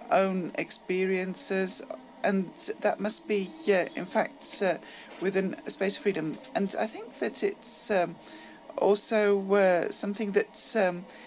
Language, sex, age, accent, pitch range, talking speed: Greek, female, 40-59, British, 170-225 Hz, 145 wpm